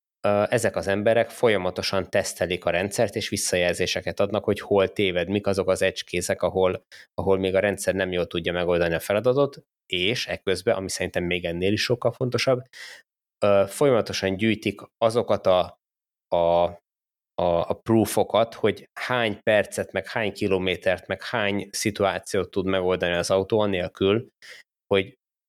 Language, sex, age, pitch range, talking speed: Hungarian, male, 20-39, 90-110 Hz, 140 wpm